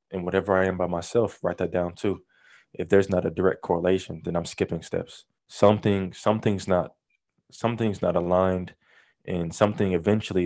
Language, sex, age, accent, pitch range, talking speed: English, male, 20-39, American, 90-110 Hz, 165 wpm